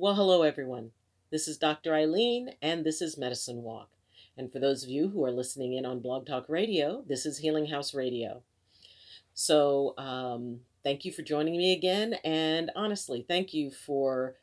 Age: 40-59